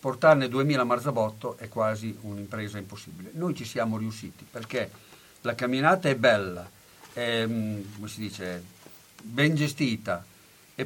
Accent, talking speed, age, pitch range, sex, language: native, 115 wpm, 50-69, 105-140 Hz, male, Italian